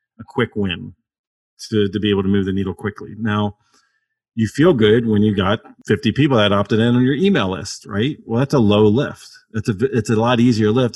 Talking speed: 225 wpm